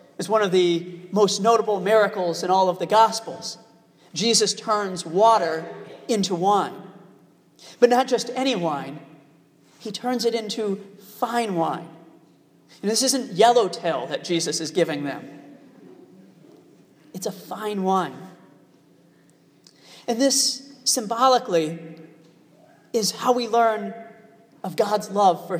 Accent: American